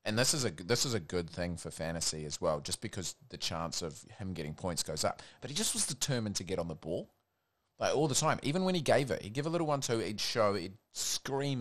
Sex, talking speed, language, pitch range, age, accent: male, 265 wpm, English, 90-115 Hz, 30-49, Australian